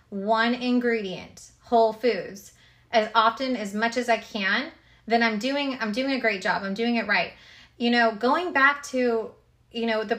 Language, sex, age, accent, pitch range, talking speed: English, female, 20-39, American, 195-245 Hz, 185 wpm